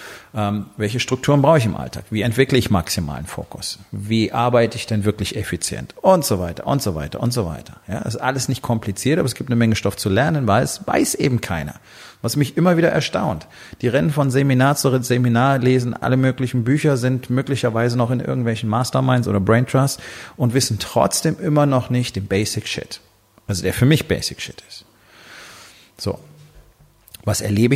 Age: 40-59